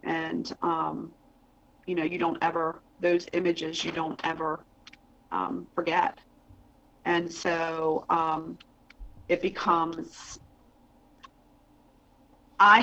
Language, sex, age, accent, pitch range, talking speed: English, female, 40-59, American, 165-185 Hz, 95 wpm